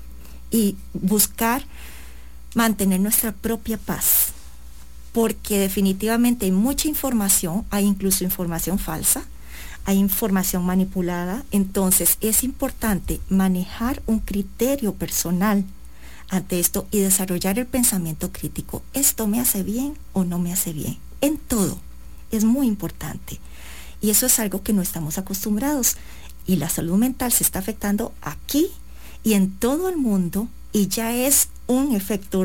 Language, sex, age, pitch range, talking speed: English, female, 40-59, 170-225 Hz, 135 wpm